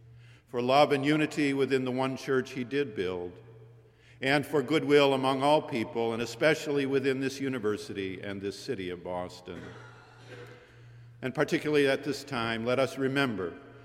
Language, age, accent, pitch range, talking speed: English, 50-69, American, 115-140 Hz, 150 wpm